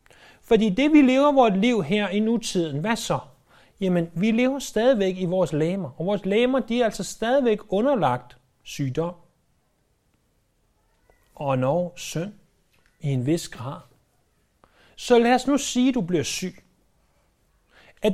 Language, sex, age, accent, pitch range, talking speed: Danish, male, 30-49, native, 155-230 Hz, 145 wpm